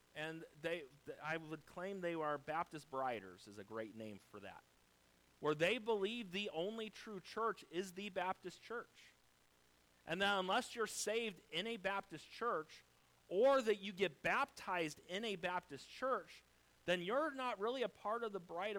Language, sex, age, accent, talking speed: English, male, 40-59, American, 170 wpm